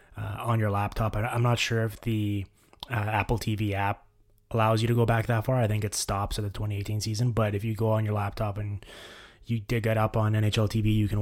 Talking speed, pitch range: 240 wpm, 105-115 Hz